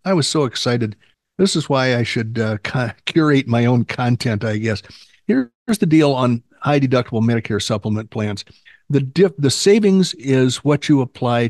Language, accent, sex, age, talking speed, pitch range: English, American, male, 50-69, 170 wpm, 110-140 Hz